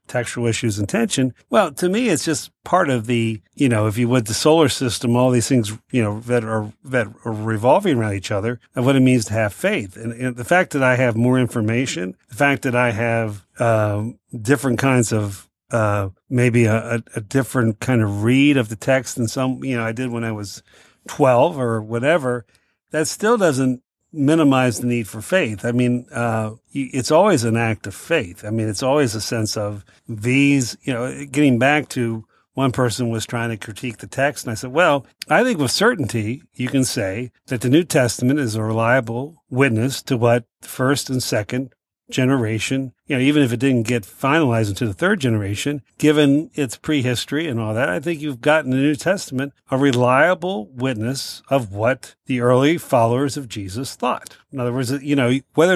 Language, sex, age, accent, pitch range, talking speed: English, male, 50-69, American, 115-140 Hz, 200 wpm